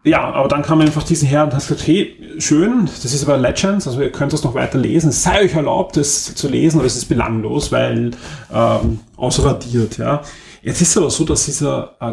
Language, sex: German, male